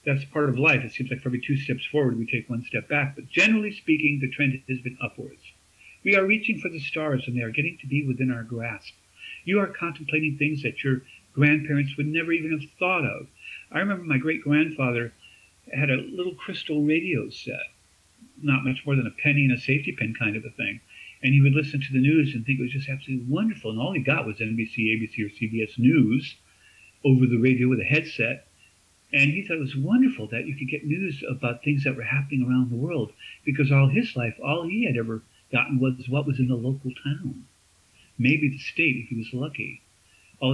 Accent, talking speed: American, 220 wpm